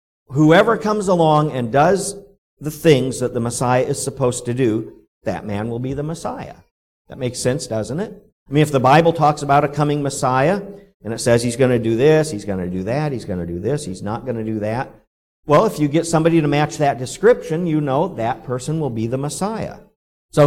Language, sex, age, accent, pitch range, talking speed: English, male, 50-69, American, 120-165 Hz, 225 wpm